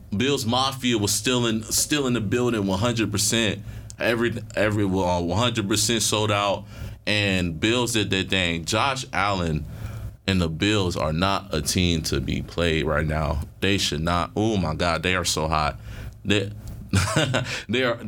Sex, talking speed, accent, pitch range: male, 165 wpm, American, 100-120 Hz